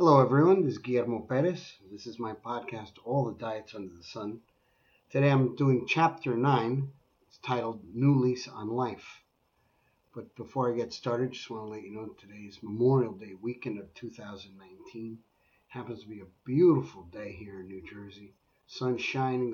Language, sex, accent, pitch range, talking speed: English, male, American, 110-140 Hz, 175 wpm